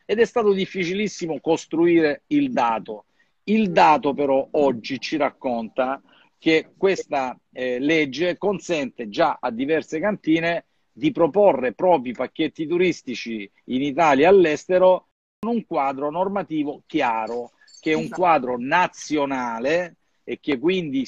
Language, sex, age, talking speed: Italian, male, 50-69, 125 wpm